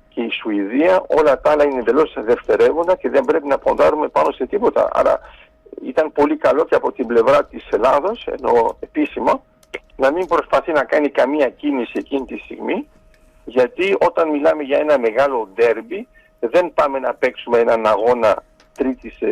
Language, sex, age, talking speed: Greek, male, 50-69, 165 wpm